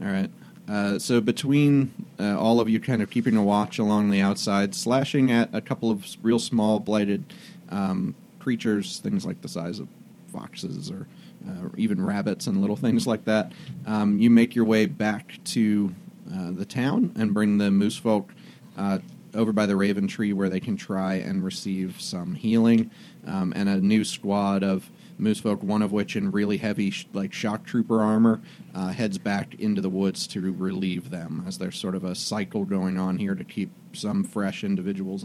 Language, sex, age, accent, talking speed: English, male, 30-49, American, 190 wpm